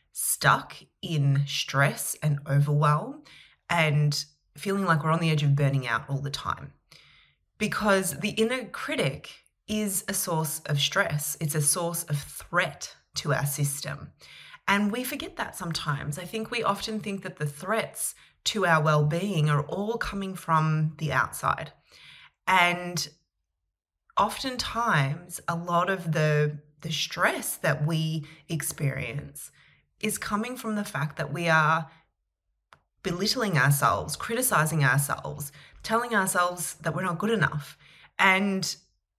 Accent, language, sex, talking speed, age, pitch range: Australian, English, female, 135 wpm, 20-39, 145-195 Hz